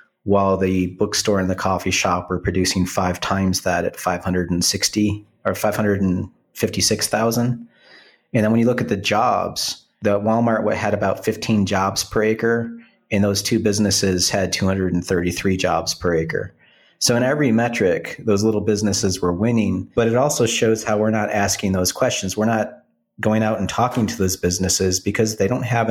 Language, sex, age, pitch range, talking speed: English, male, 40-59, 95-115 Hz, 170 wpm